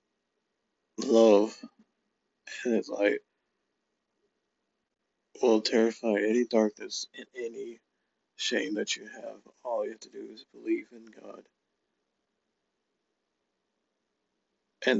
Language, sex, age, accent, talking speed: English, male, 50-69, American, 90 wpm